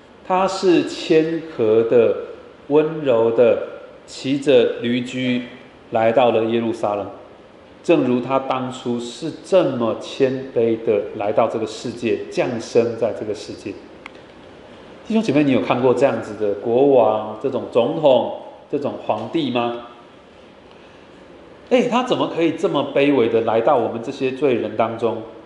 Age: 30-49